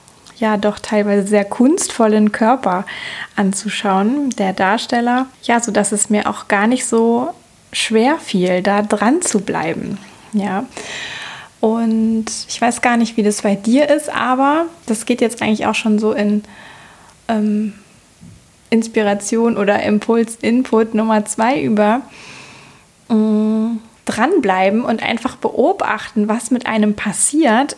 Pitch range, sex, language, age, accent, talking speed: 215-255 Hz, female, German, 20-39, German, 130 wpm